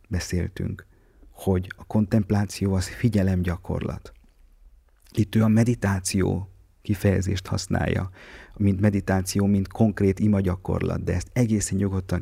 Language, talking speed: Hungarian, 105 wpm